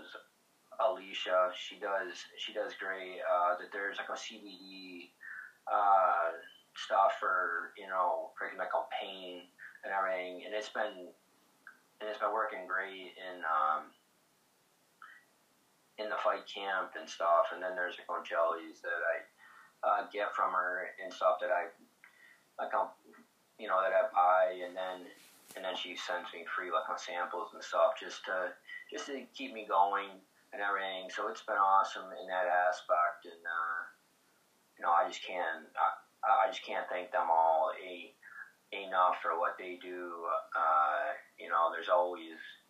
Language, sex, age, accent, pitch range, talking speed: English, male, 20-39, American, 90-100 Hz, 160 wpm